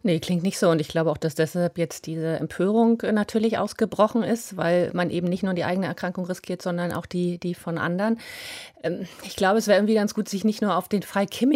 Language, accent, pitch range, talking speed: German, German, 180-215 Hz, 230 wpm